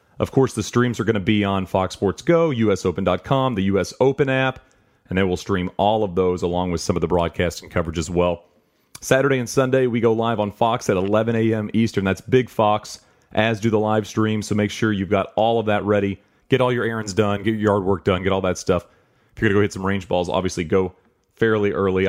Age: 30-49